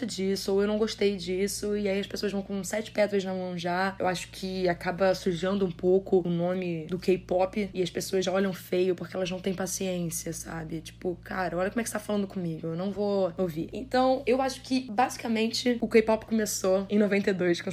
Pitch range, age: 175-205 Hz, 20-39